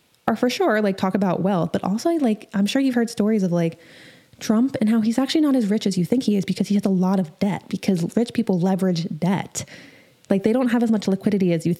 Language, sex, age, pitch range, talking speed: English, female, 20-39, 175-225 Hz, 260 wpm